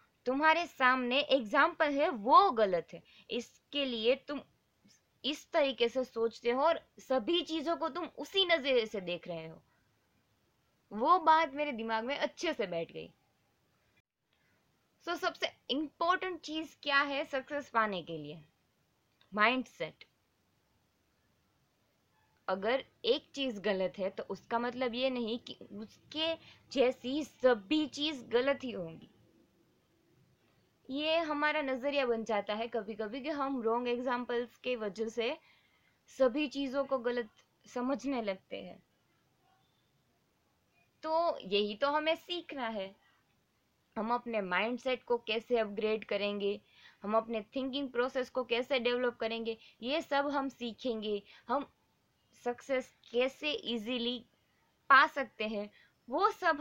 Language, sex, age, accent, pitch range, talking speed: Hindi, female, 20-39, native, 220-290 Hz, 130 wpm